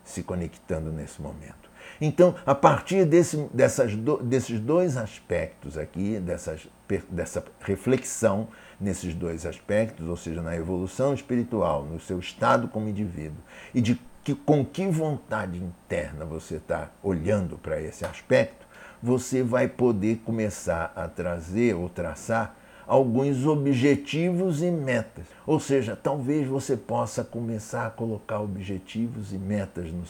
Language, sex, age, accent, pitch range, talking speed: Portuguese, male, 60-79, Brazilian, 90-120 Hz, 135 wpm